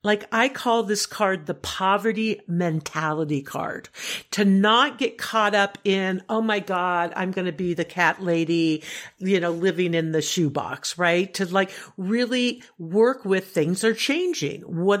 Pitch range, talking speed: 175-230 Hz, 165 wpm